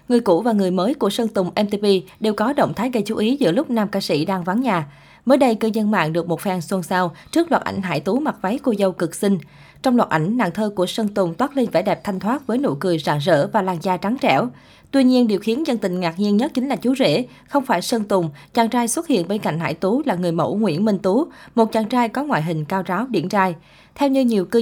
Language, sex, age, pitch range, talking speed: Vietnamese, female, 20-39, 180-235 Hz, 280 wpm